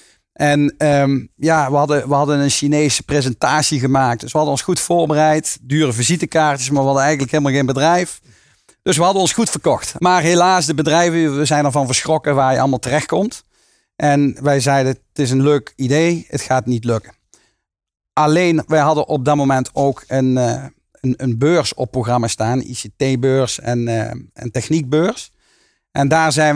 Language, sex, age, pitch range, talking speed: Dutch, male, 40-59, 130-155 Hz, 175 wpm